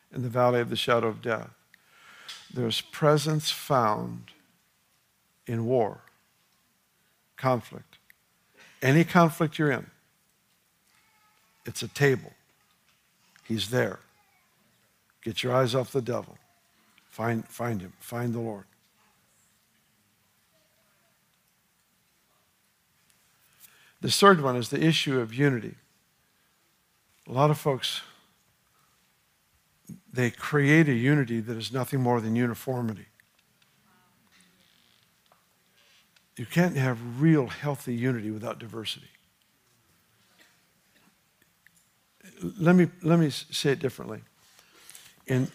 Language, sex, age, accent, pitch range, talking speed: English, male, 60-79, American, 115-150 Hz, 95 wpm